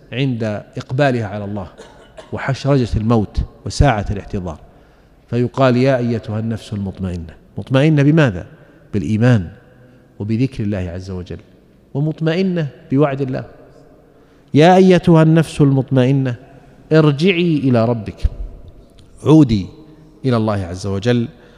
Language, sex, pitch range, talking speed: Arabic, male, 105-140 Hz, 95 wpm